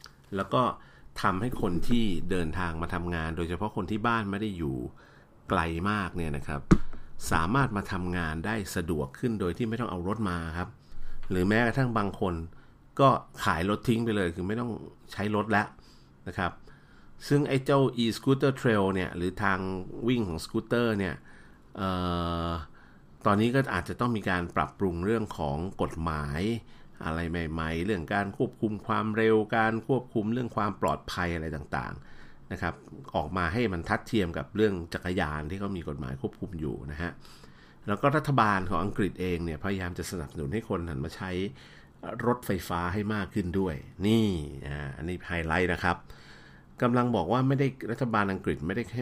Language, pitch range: Thai, 85-110 Hz